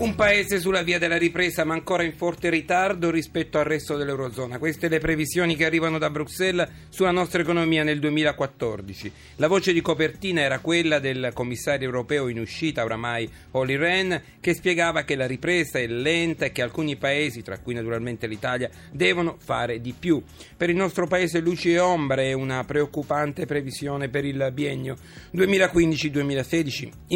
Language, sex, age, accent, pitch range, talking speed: Italian, male, 40-59, native, 130-170 Hz, 165 wpm